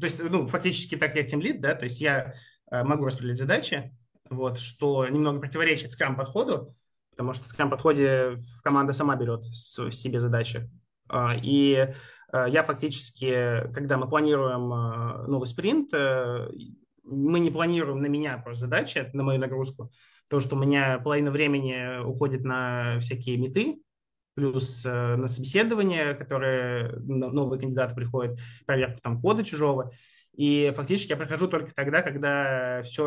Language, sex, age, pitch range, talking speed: Russian, male, 20-39, 125-150 Hz, 145 wpm